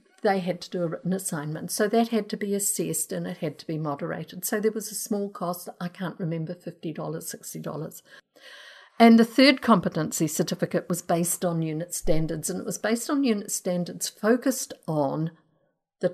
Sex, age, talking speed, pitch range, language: female, 50-69, 185 wpm, 165-210 Hz, English